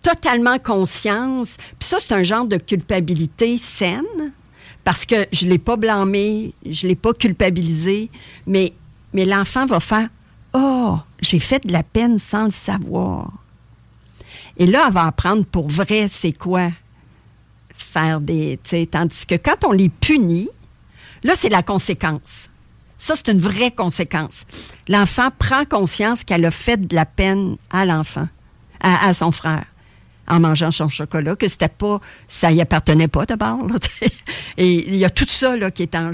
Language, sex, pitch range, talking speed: French, female, 160-205 Hz, 170 wpm